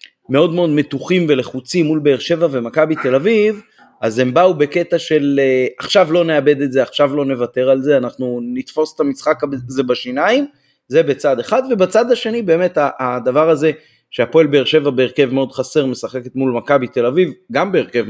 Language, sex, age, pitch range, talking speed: Hebrew, male, 30-49, 115-155 Hz, 170 wpm